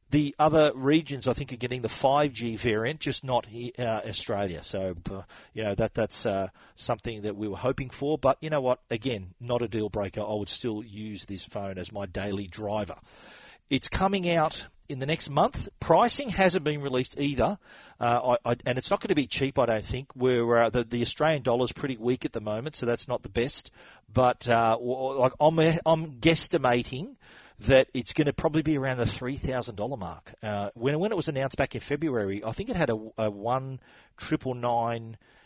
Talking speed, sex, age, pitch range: 200 wpm, male, 40-59, 115-140 Hz